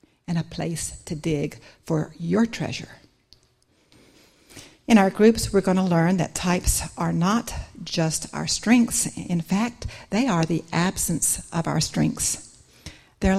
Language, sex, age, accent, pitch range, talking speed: English, female, 60-79, American, 155-200 Hz, 145 wpm